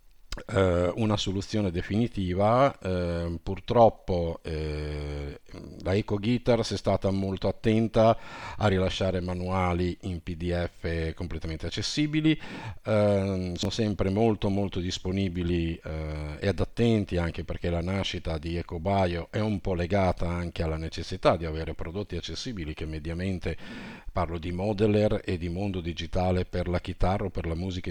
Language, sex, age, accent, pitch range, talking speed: Italian, male, 50-69, native, 85-105 Hz, 140 wpm